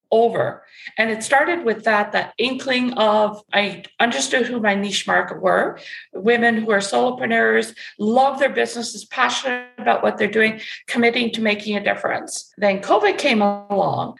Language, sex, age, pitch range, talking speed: English, female, 50-69, 205-255 Hz, 155 wpm